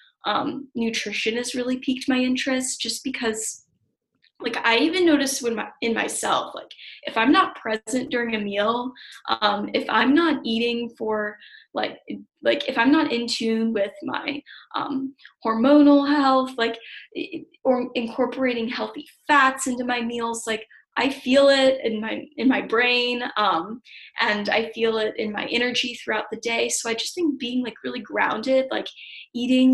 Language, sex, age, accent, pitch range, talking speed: English, female, 10-29, American, 220-270 Hz, 165 wpm